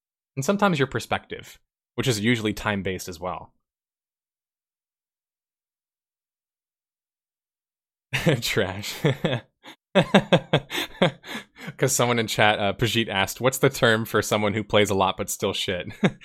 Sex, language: male, English